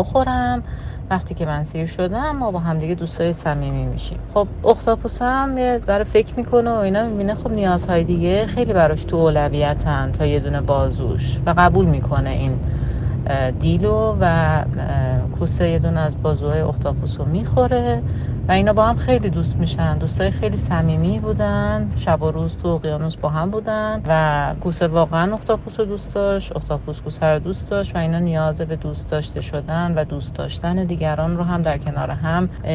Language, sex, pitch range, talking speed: Persian, female, 130-185 Hz, 165 wpm